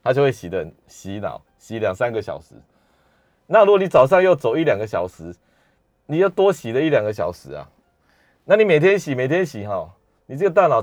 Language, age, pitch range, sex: Chinese, 30-49, 110-160 Hz, male